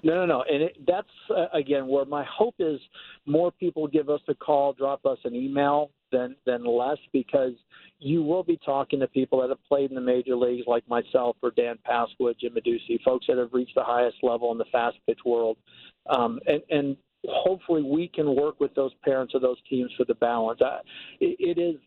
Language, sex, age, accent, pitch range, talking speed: English, male, 50-69, American, 130-155 Hz, 210 wpm